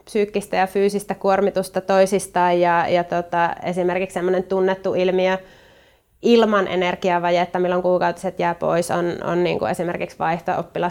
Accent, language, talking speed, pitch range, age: native, Finnish, 125 wpm, 185-200 Hz, 20-39